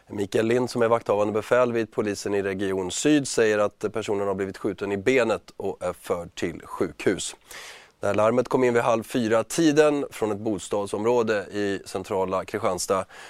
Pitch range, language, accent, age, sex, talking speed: 100-125 Hz, Swedish, native, 30-49, male, 175 wpm